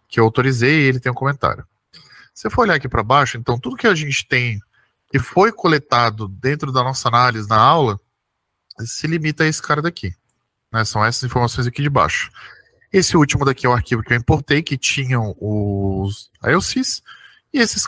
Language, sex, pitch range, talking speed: Portuguese, male, 120-185 Hz, 195 wpm